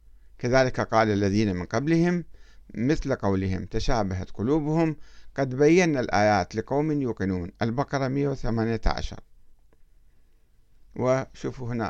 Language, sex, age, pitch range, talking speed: Arabic, male, 50-69, 100-155 Hz, 90 wpm